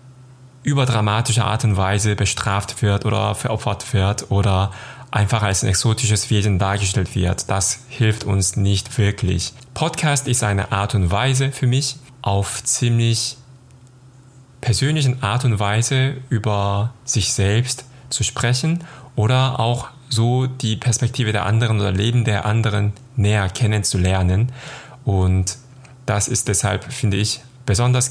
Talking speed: 130 wpm